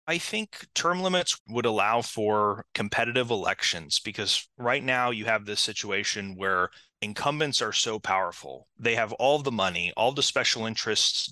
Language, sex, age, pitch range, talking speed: English, male, 30-49, 100-115 Hz, 160 wpm